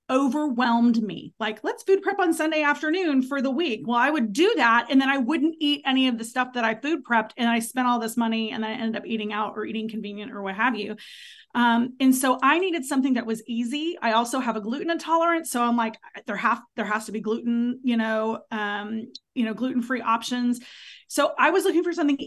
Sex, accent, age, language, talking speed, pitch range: female, American, 30-49, English, 235 wpm, 220-260 Hz